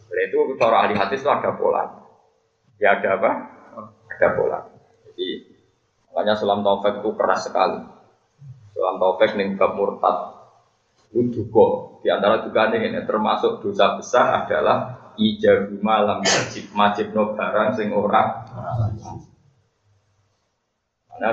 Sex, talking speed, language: male, 125 wpm, Indonesian